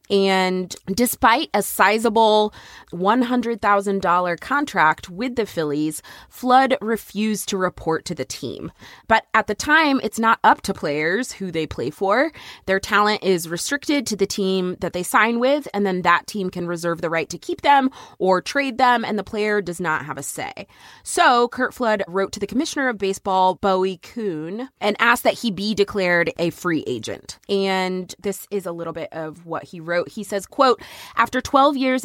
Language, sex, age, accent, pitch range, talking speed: English, female, 20-39, American, 175-230 Hz, 185 wpm